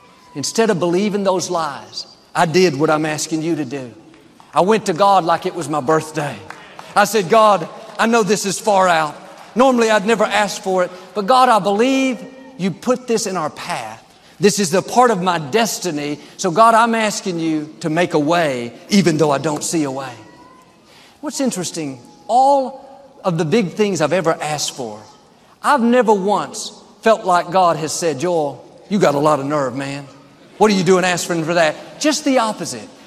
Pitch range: 160-220 Hz